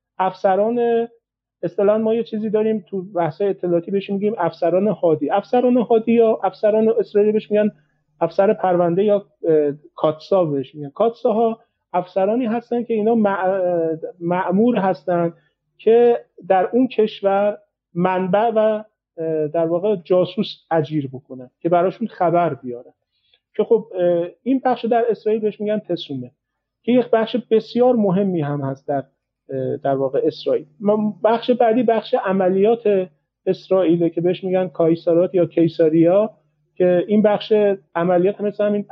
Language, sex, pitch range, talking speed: Persian, male, 165-220 Hz, 135 wpm